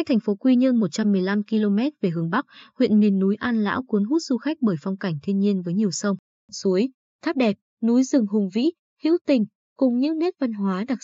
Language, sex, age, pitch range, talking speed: Vietnamese, female, 20-39, 195-265 Hz, 230 wpm